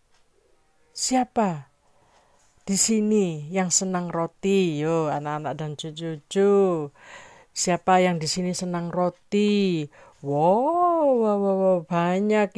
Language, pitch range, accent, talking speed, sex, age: Indonesian, 155-210 Hz, native, 100 wpm, female, 40-59